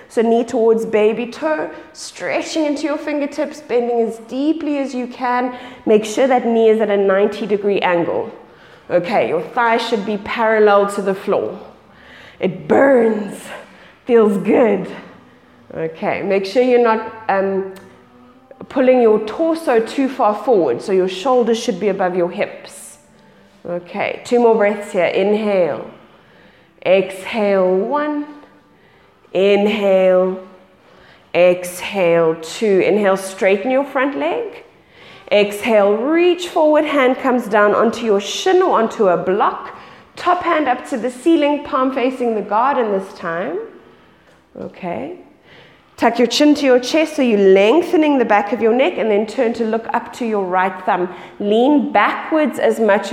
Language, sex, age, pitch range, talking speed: English, female, 20-39, 200-260 Hz, 145 wpm